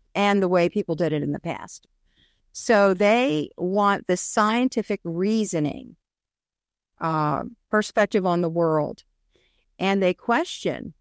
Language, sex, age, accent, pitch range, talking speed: English, female, 50-69, American, 170-215 Hz, 125 wpm